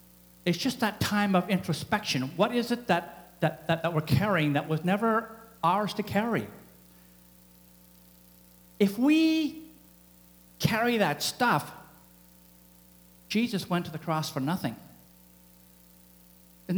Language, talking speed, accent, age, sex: English, 120 wpm, American, 50-69, male